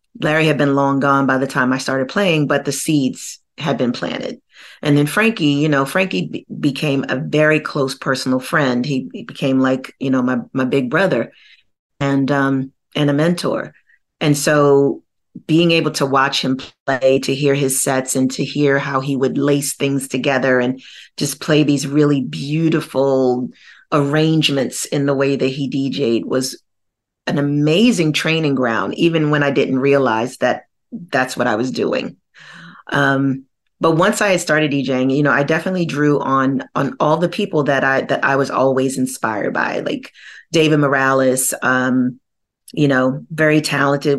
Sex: female